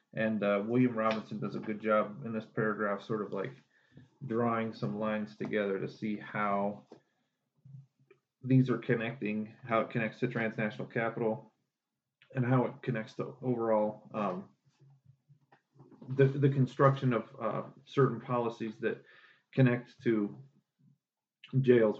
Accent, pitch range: American, 110-130 Hz